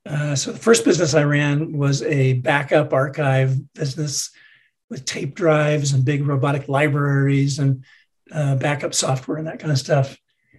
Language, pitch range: English, 140-160 Hz